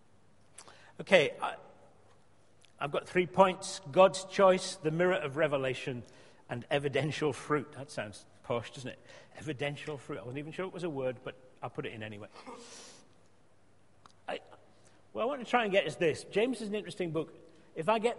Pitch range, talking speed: 145-200 Hz, 180 wpm